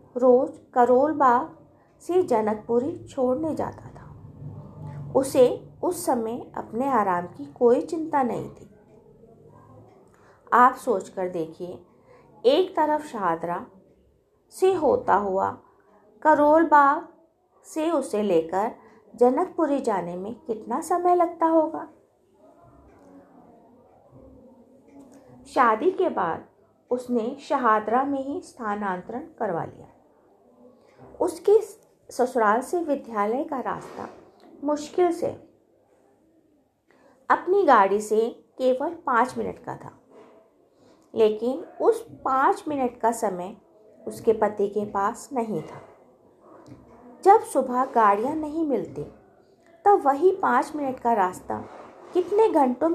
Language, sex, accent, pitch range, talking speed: Hindi, female, native, 220-320 Hz, 100 wpm